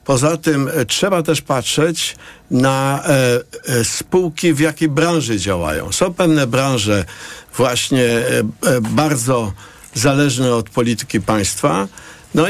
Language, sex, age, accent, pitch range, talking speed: Polish, male, 50-69, native, 115-155 Hz, 100 wpm